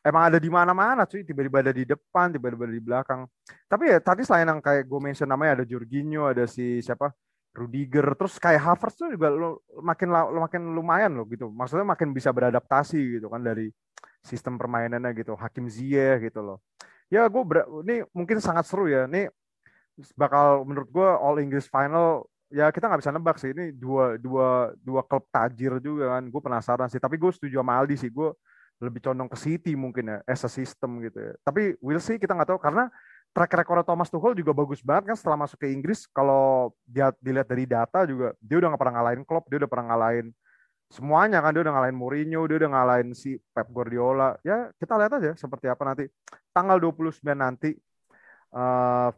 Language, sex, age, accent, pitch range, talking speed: Indonesian, male, 20-39, native, 125-160 Hz, 195 wpm